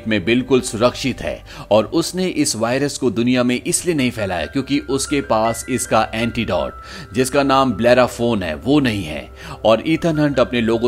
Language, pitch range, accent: Hindi, 115-145 Hz, native